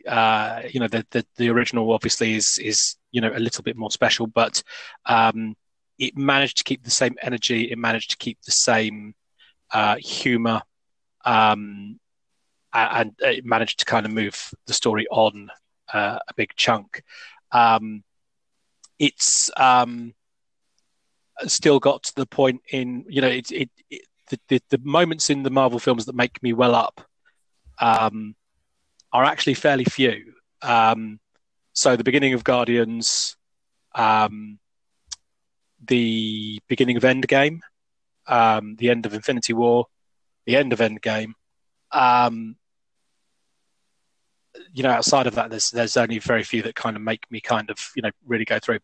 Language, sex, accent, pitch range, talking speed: English, male, British, 110-125 Hz, 155 wpm